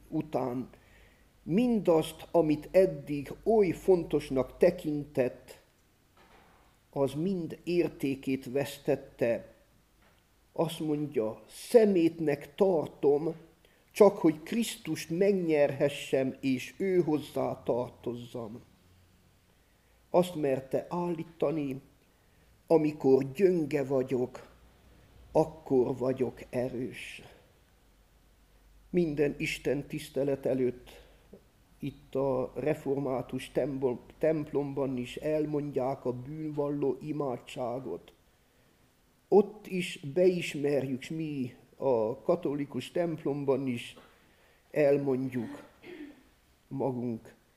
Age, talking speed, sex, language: 50-69, 70 wpm, male, Hungarian